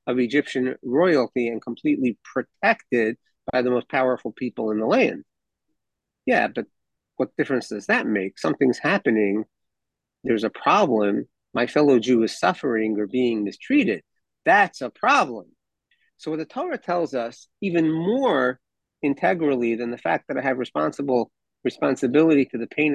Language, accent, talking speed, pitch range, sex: English, American, 150 wpm, 125-195 Hz, male